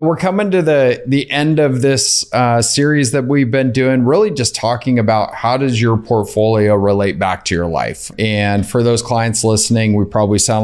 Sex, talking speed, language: male, 195 wpm, English